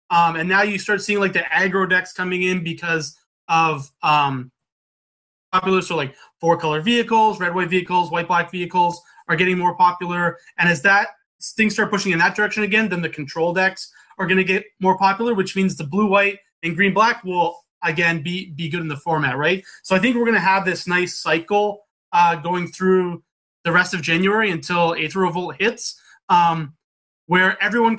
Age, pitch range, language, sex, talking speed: 30-49, 170-210 Hz, English, male, 185 wpm